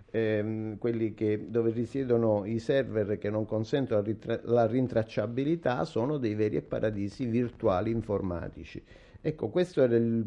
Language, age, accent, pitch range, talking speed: Italian, 50-69, native, 110-140 Hz, 125 wpm